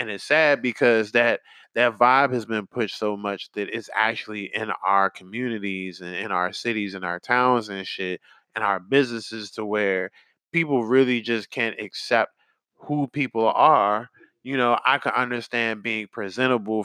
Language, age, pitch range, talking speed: English, 20-39, 100-125 Hz, 165 wpm